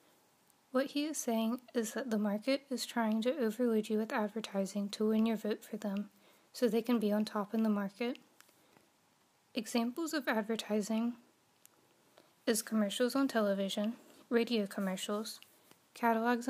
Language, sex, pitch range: English, female, 210-245 Hz